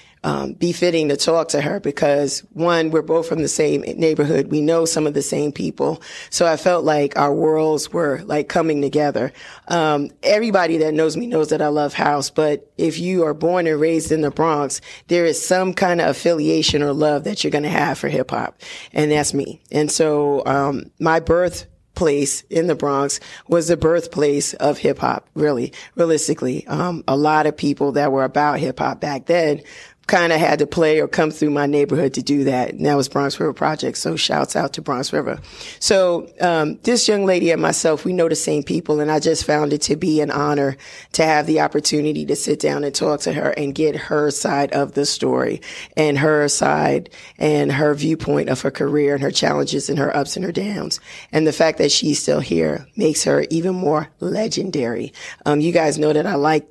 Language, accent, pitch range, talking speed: English, American, 145-165 Hz, 210 wpm